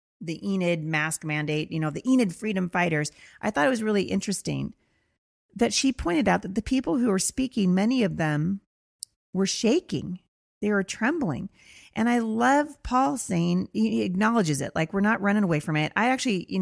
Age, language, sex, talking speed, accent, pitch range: 30-49, English, female, 190 wpm, American, 155-205 Hz